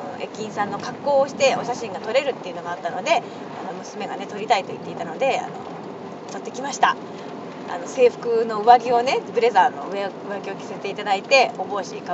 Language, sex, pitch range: Japanese, female, 210-300 Hz